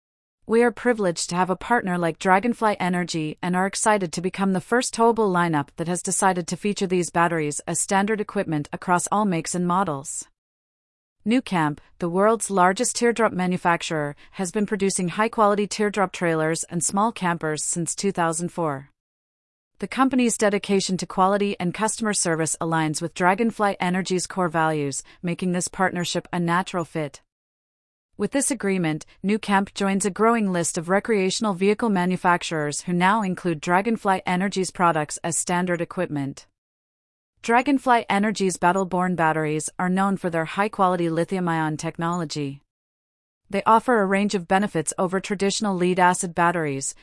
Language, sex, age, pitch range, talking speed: English, female, 30-49, 165-200 Hz, 145 wpm